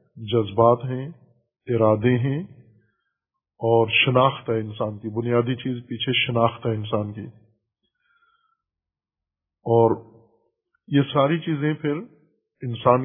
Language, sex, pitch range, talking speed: Urdu, male, 120-155 Hz, 100 wpm